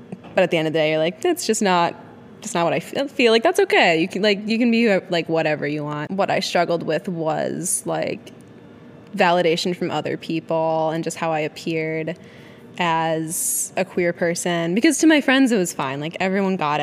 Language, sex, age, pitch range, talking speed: English, female, 10-29, 160-215 Hz, 210 wpm